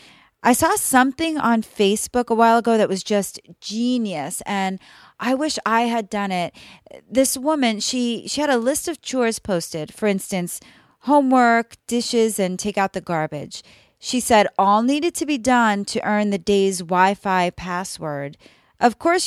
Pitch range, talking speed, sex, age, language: 185-235 Hz, 165 wpm, female, 30-49, English